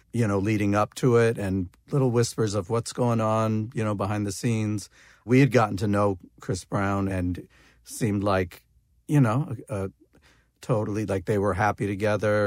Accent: American